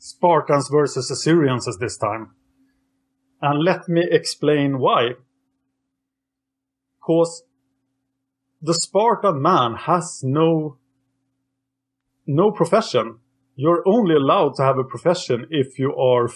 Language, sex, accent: English, male, Norwegian